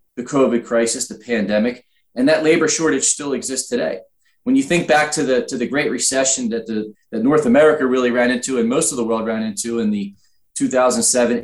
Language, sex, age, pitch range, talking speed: English, male, 30-49, 120-155 Hz, 210 wpm